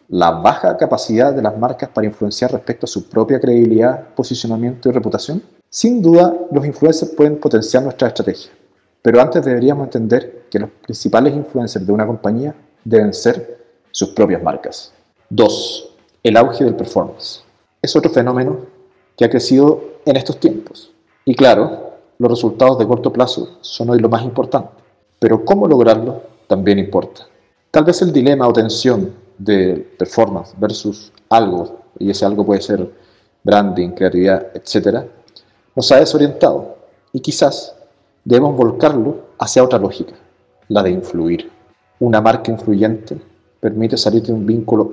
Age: 40-59